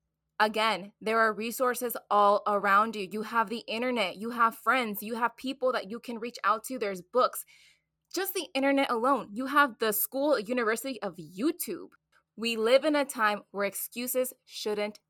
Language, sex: English, female